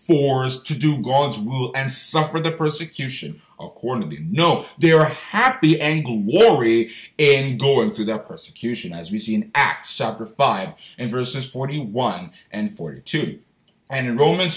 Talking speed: 150 wpm